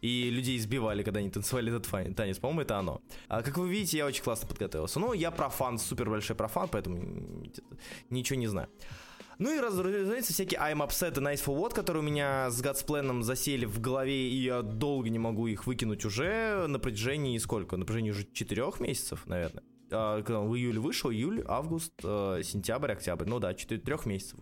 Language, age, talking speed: Russian, 20-39, 195 wpm